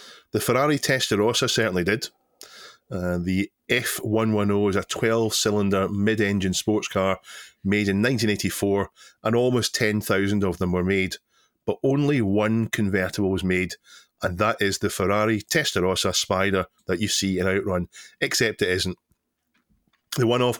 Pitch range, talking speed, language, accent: 95-110 Hz, 135 wpm, English, British